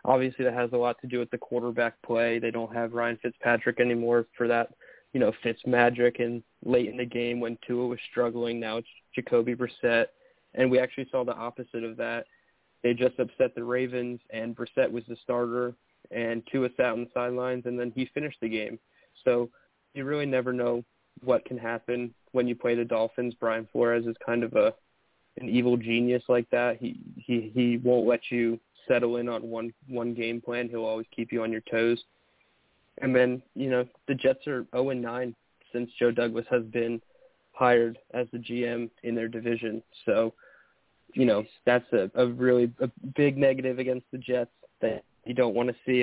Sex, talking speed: male, 195 wpm